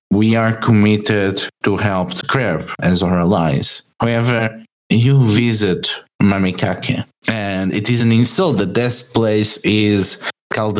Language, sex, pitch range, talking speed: English, male, 95-115 Hz, 130 wpm